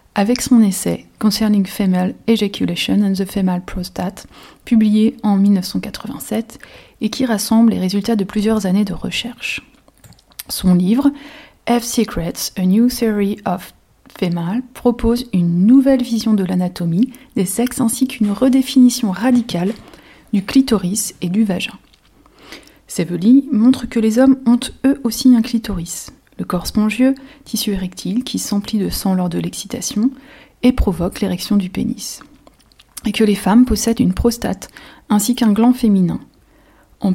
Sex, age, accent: female, 30-49, French